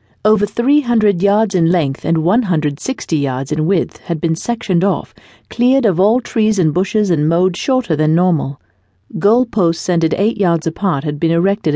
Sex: female